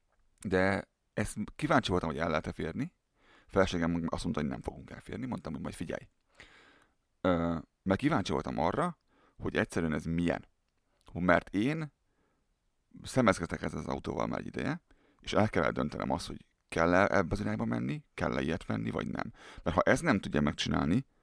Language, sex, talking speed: Hungarian, male, 160 wpm